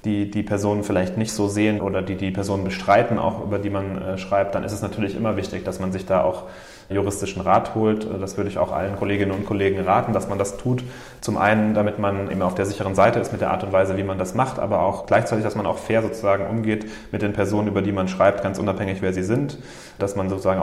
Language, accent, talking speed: German, German, 255 wpm